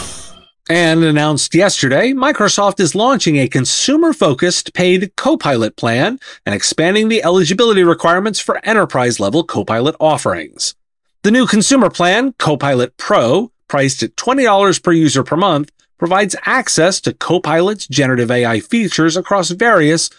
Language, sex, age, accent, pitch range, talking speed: English, male, 30-49, American, 140-205 Hz, 125 wpm